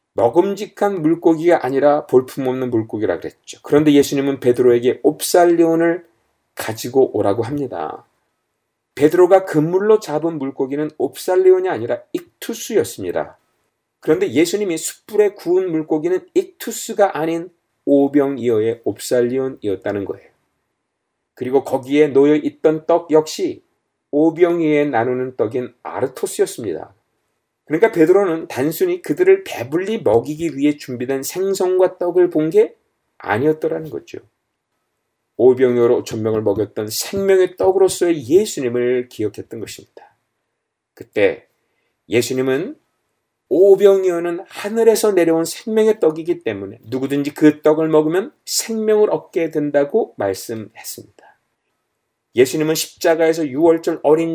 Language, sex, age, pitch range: Korean, male, 40-59, 140-195 Hz